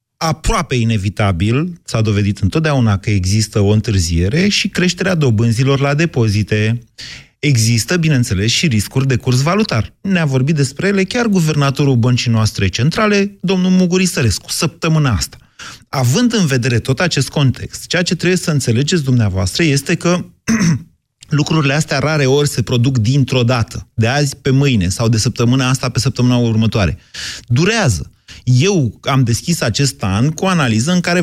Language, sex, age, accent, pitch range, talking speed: Romanian, male, 30-49, native, 115-175 Hz, 150 wpm